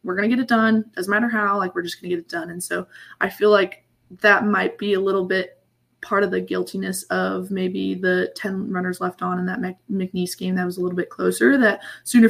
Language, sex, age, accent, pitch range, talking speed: English, female, 20-39, American, 185-215 Hz, 250 wpm